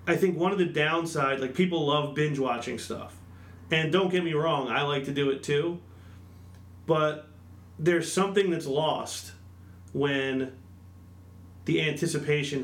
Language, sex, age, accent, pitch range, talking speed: English, male, 30-49, American, 95-155 Hz, 140 wpm